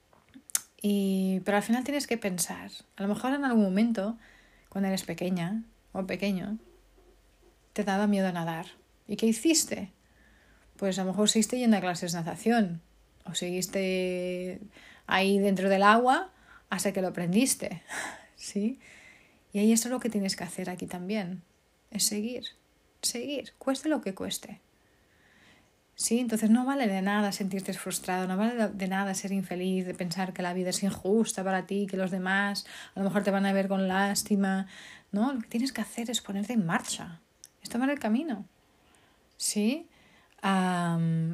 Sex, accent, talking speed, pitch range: female, Spanish, 170 wpm, 190-225 Hz